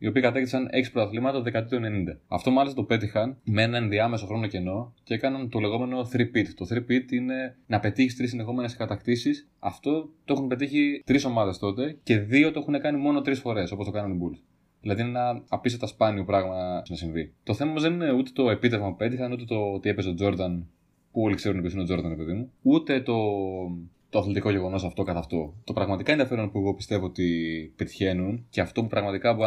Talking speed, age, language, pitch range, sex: 210 wpm, 20-39, Greek, 95-125 Hz, male